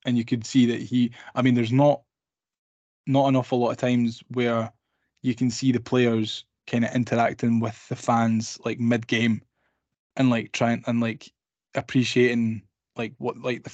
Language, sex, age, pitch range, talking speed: English, male, 10-29, 115-130 Hz, 165 wpm